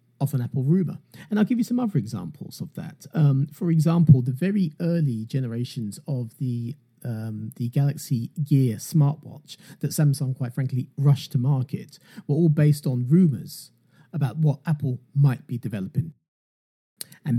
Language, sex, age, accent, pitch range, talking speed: English, male, 40-59, British, 115-150 Hz, 160 wpm